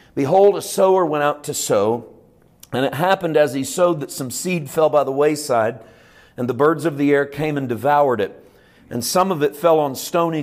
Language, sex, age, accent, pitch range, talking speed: English, male, 50-69, American, 135-160 Hz, 215 wpm